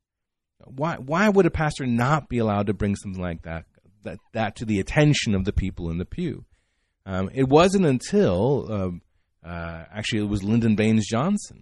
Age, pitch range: 40-59, 90-120 Hz